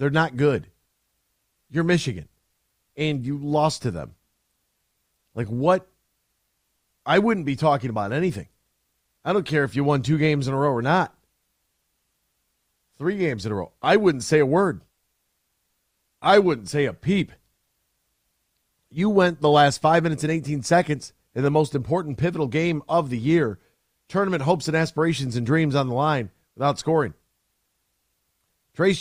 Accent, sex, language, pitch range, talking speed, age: American, male, English, 115-165 Hz, 155 wpm, 40-59